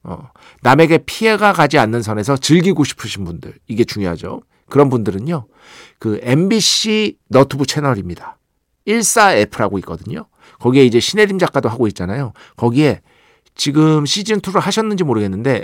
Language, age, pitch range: Korean, 50-69, 115-165 Hz